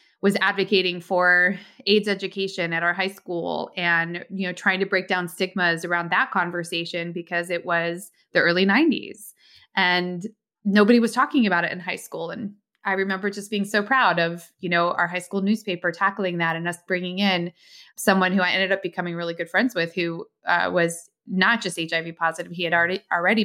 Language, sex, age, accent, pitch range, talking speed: English, female, 20-39, American, 175-205 Hz, 195 wpm